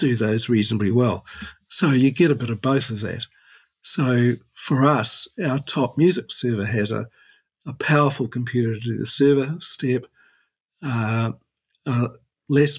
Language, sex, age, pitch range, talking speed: English, male, 50-69, 110-130 Hz, 155 wpm